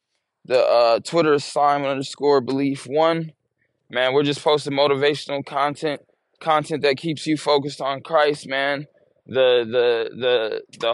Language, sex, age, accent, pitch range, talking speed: English, male, 20-39, American, 135-150 Hz, 135 wpm